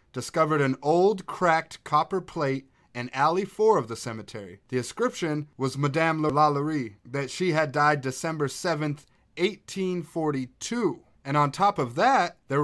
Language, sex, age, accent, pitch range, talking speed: English, male, 30-49, American, 130-170 Hz, 140 wpm